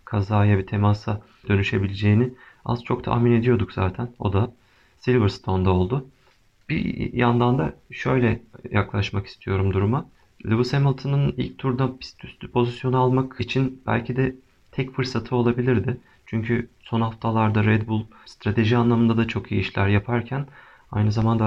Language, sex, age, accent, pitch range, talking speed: Turkish, male, 40-59, native, 105-120 Hz, 135 wpm